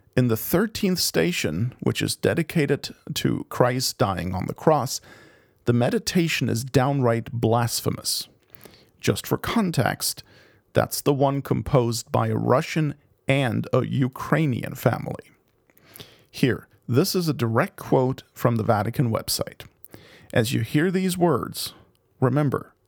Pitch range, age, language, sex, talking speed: 120-145 Hz, 40-59, English, male, 125 wpm